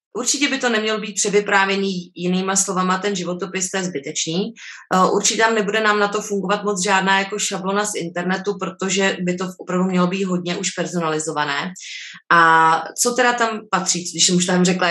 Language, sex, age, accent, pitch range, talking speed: English, female, 20-39, Czech, 165-190 Hz, 190 wpm